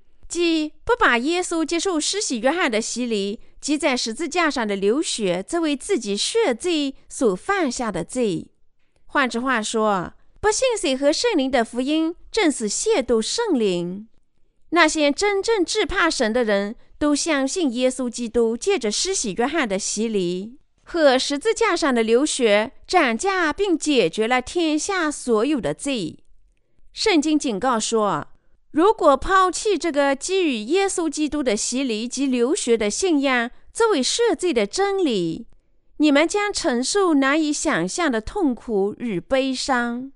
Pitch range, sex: 235-335 Hz, female